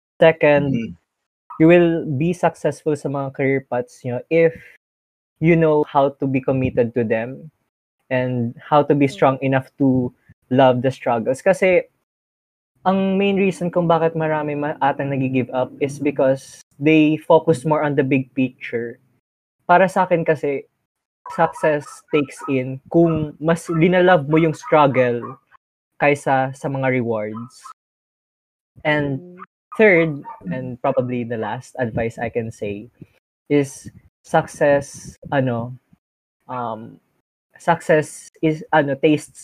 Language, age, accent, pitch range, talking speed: Filipino, 20-39, native, 130-160 Hz, 125 wpm